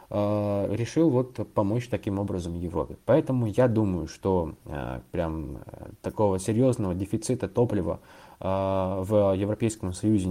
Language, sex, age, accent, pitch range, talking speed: Russian, male, 20-39, native, 95-115 Hz, 105 wpm